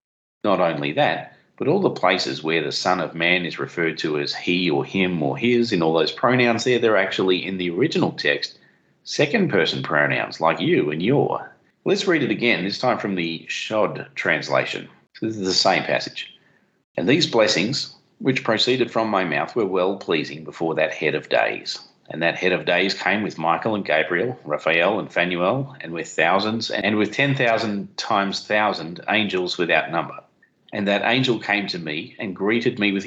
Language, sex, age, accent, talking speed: English, male, 40-59, Australian, 185 wpm